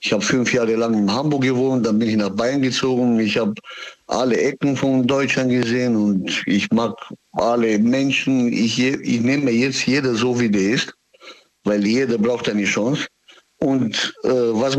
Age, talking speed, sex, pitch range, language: 60-79, 175 wpm, male, 110-140 Hz, German